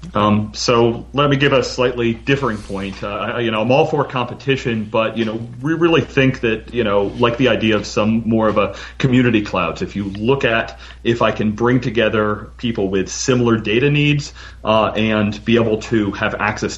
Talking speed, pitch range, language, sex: 200 wpm, 95-115 Hz, English, male